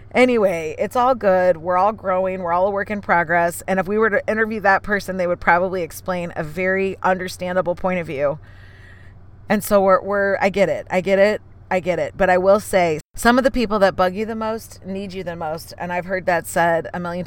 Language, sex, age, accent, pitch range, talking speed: English, female, 30-49, American, 170-210 Hz, 235 wpm